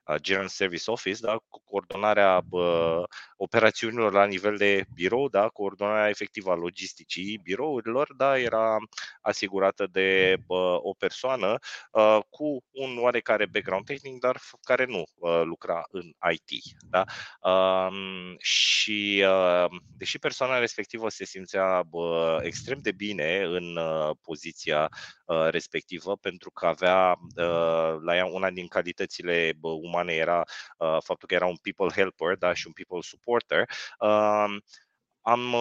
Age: 20-39